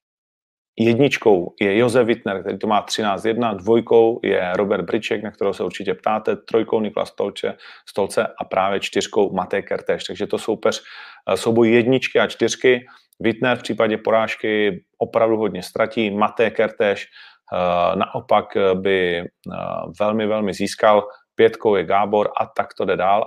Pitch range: 100-115 Hz